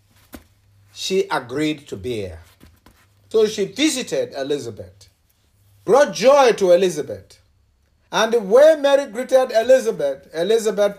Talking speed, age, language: 110 wpm, 60-79, English